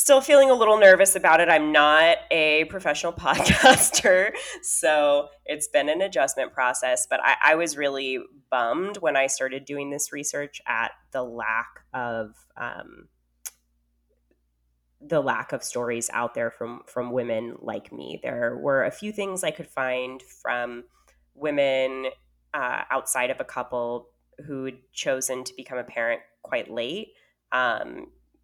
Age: 10-29